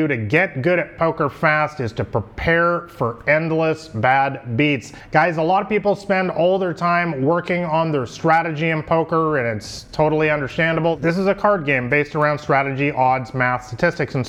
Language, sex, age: English, male, 30-49